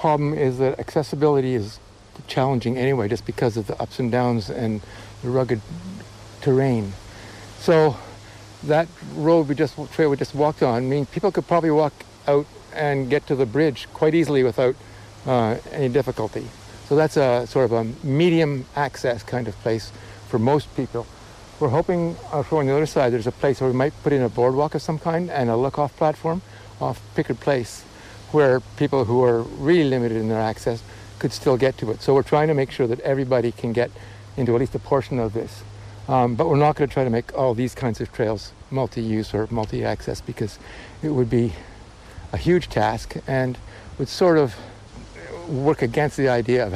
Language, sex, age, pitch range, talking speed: English, male, 60-79, 110-145 Hz, 195 wpm